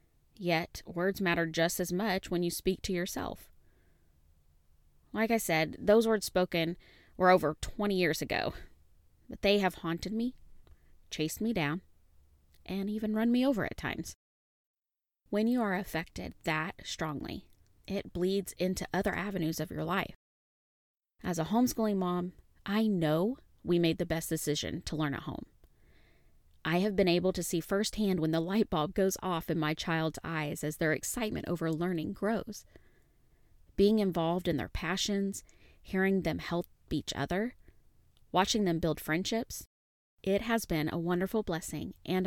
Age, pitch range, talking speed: 20-39, 155-195 Hz, 155 wpm